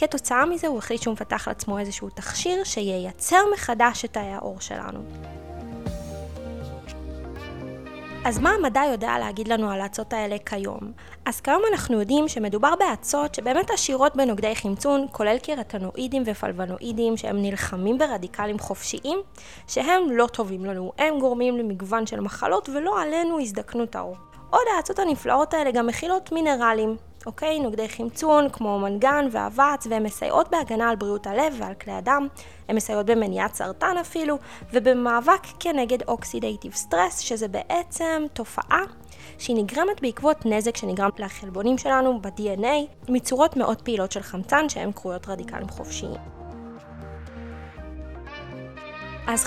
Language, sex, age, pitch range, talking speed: Hebrew, female, 20-39, 200-285 Hz, 130 wpm